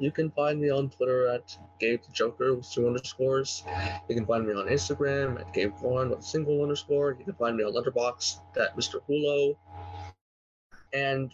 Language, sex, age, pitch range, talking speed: English, male, 20-39, 90-130 Hz, 185 wpm